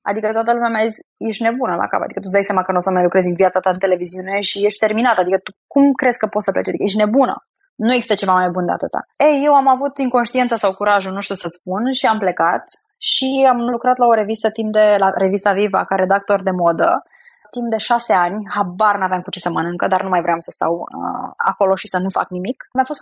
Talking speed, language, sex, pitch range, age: 260 wpm, Romanian, female, 190-240 Hz, 20-39